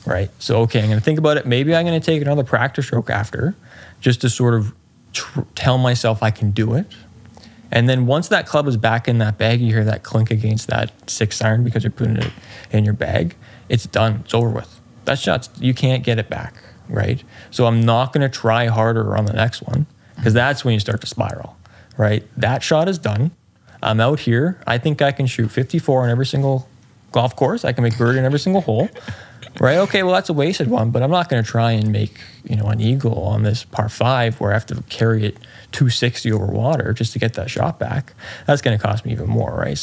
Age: 20-39